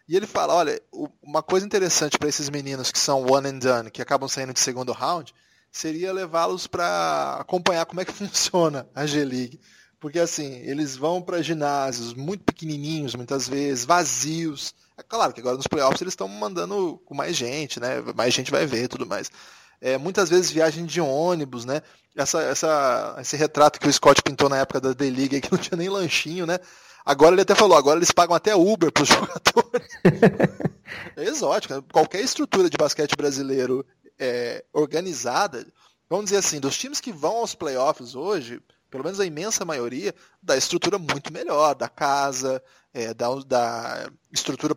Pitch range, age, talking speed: 130-175 Hz, 20-39, 180 wpm